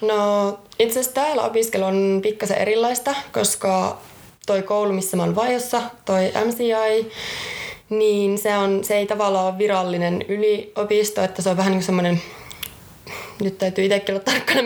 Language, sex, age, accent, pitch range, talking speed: Finnish, female, 20-39, native, 180-215 Hz, 155 wpm